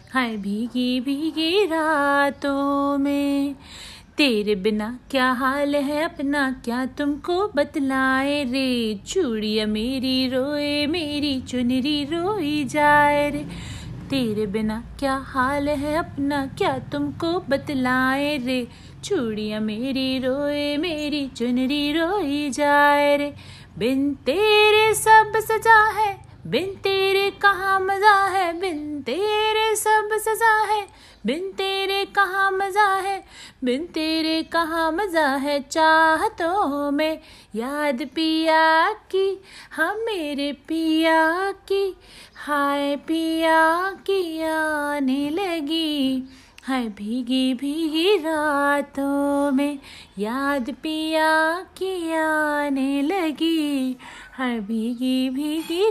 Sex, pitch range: female, 265-325 Hz